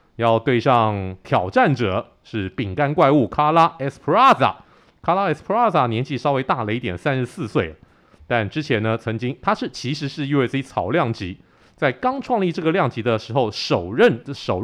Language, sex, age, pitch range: Chinese, male, 30-49, 105-145 Hz